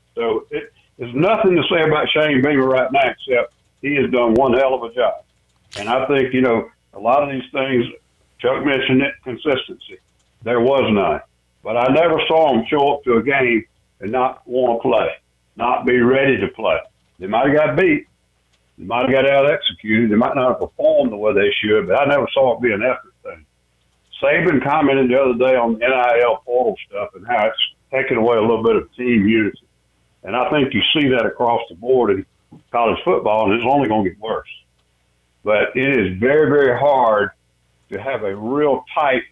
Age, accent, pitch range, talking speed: 60-79, American, 100-150 Hz, 210 wpm